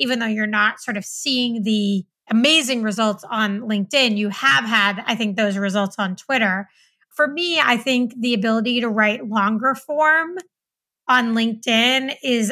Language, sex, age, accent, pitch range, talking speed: English, female, 30-49, American, 215-250 Hz, 165 wpm